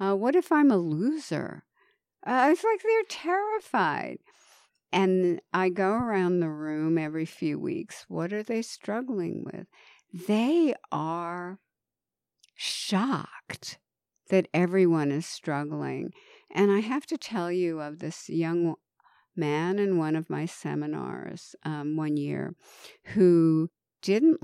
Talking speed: 130 wpm